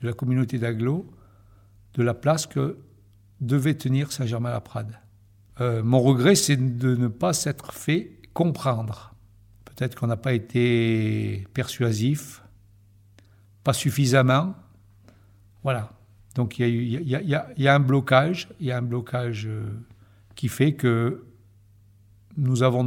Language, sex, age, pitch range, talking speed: French, male, 60-79, 105-135 Hz, 135 wpm